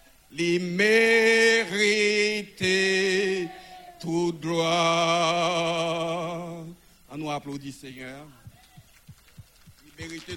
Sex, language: male, French